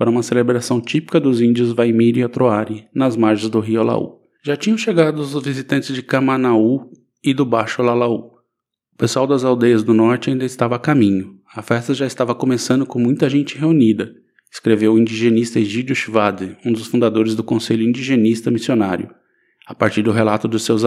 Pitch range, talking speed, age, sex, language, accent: 110-135 Hz, 180 wpm, 20-39, male, Portuguese, Brazilian